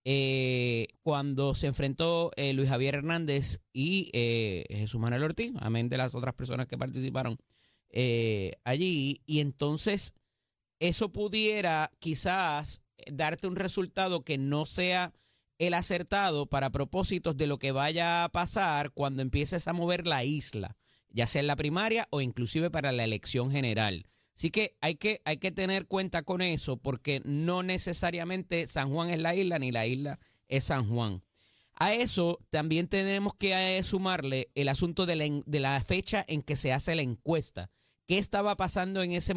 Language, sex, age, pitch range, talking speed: Spanish, male, 30-49, 135-175 Hz, 160 wpm